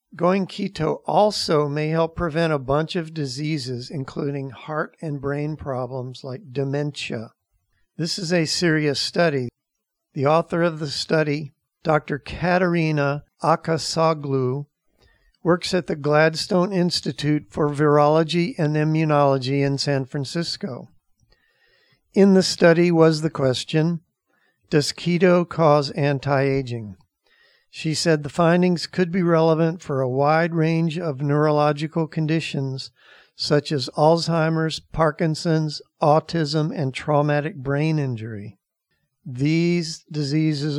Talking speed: 115 wpm